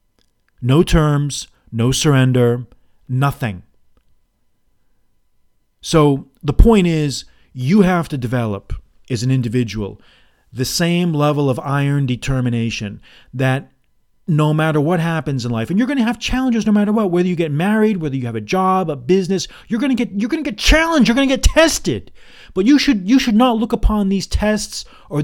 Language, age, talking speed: English, 40-59, 175 wpm